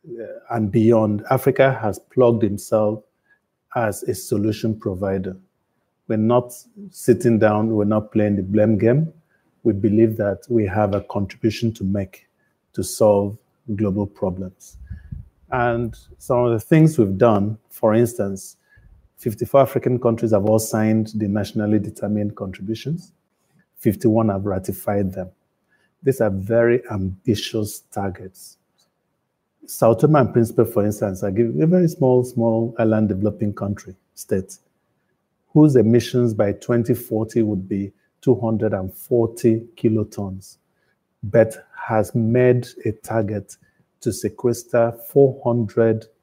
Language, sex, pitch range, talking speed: English, male, 105-120 Hz, 115 wpm